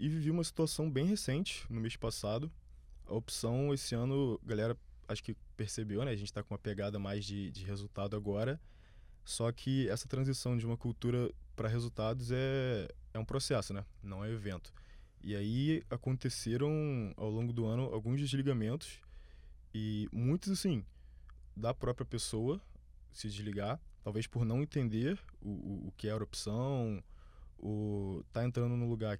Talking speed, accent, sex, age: 160 wpm, Brazilian, male, 20-39